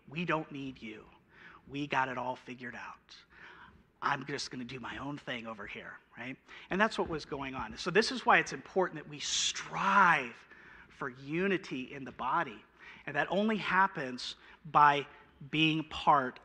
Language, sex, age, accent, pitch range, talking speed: English, male, 40-59, American, 140-190 Hz, 170 wpm